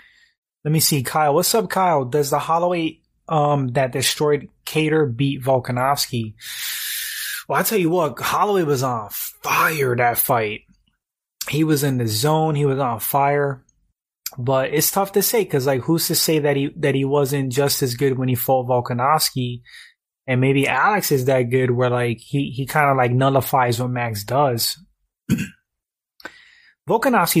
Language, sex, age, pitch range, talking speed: English, male, 20-39, 125-155 Hz, 165 wpm